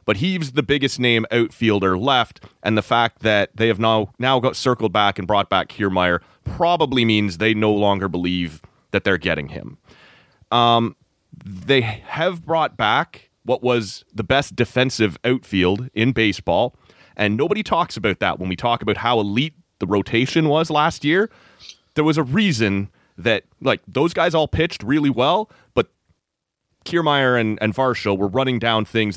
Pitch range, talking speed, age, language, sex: 105-135 Hz, 170 wpm, 30-49, English, male